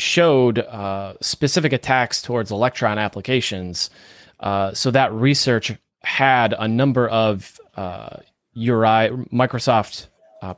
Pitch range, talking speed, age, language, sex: 105-125 Hz, 110 wpm, 30-49, English, male